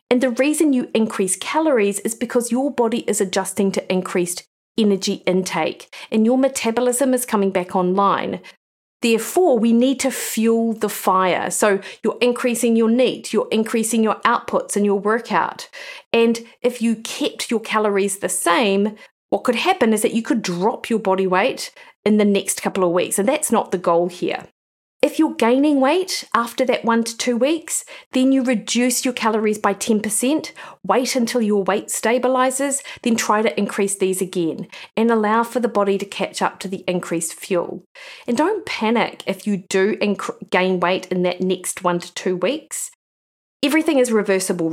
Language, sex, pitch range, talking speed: English, female, 195-250 Hz, 175 wpm